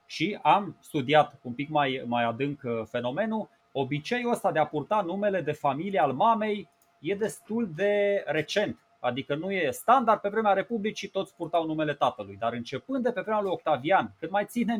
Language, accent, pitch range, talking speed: Romanian, native, 145-195 Hz, 180 wpm